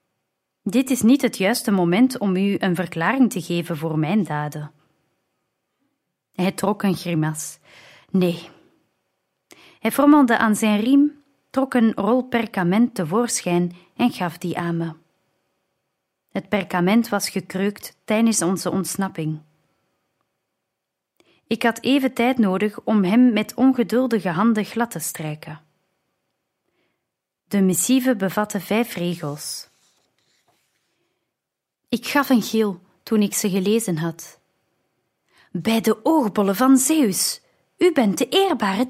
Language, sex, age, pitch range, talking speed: Dutch, female, 30-49, 180-240 Hz, 120 wpm